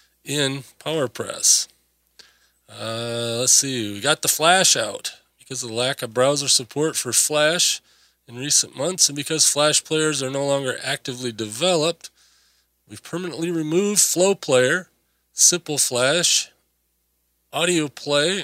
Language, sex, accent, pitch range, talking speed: English, male, American, 120-150 Hz, 130 wpm